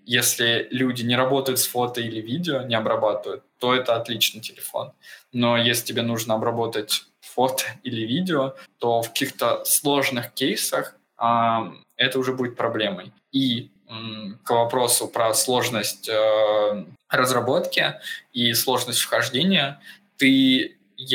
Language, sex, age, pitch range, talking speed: Russian, male, 20-39, 115-130 Hz, 120 wpm